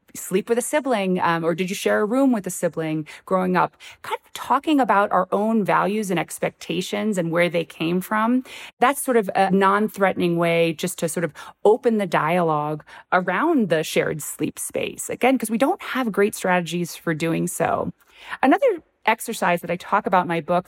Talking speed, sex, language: 195 wpm, female, English